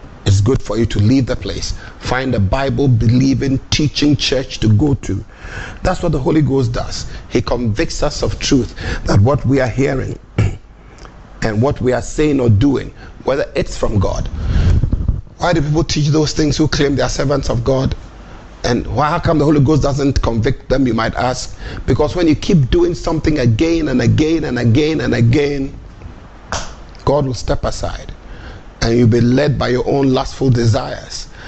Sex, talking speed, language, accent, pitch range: male, 180 wpm, English, Nigerian, 105-140 Hz